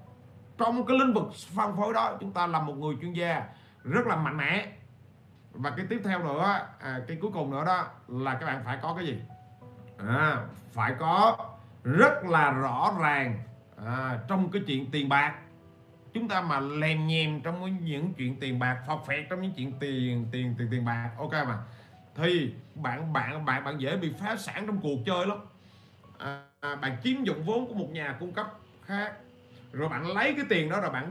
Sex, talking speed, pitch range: male, 200 wpm, 125-200 Hz